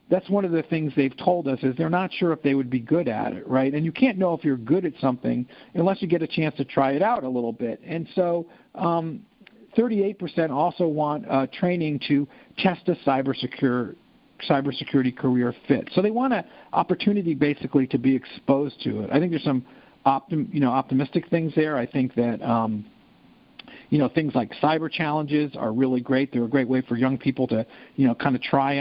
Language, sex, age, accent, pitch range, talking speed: English, male, 50-69, American, 130-170 Hz, 215 wpm